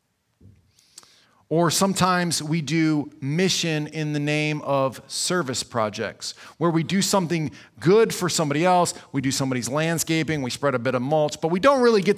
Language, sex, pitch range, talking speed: English, male, 130-185 Hz, 165 wpm